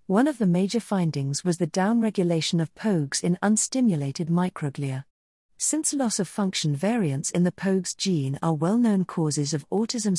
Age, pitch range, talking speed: 50-69, 155-205 Hz, 145 wpm